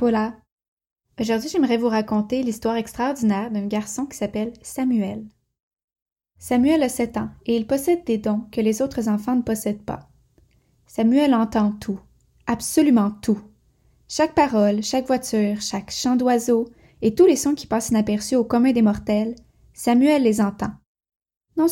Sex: female